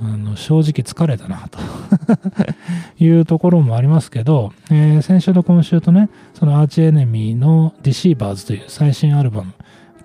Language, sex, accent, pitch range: Japanese, male, native, 115-170 Hz